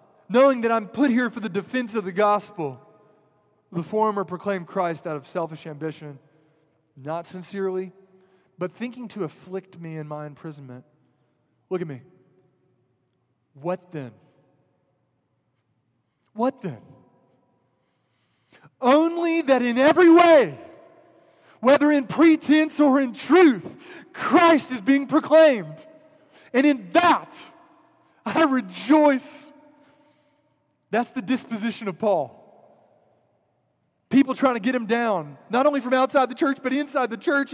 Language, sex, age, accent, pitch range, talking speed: English, male, 20-39, American, 155-255 Hz, 125 wpm